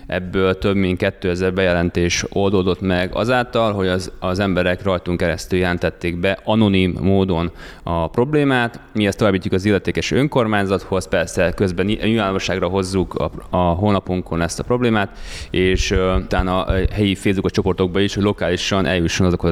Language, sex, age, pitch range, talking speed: Hungarian, male, 20-39, 90-105 Hz, 150 wpm